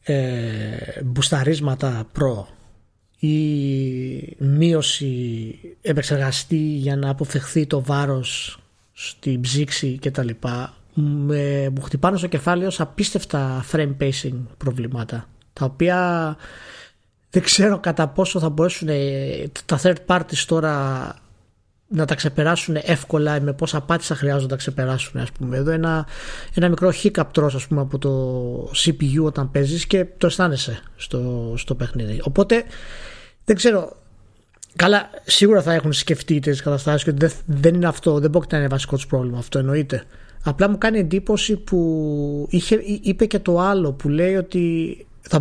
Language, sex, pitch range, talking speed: Greek, male, 130-170 Hz, 140 wpm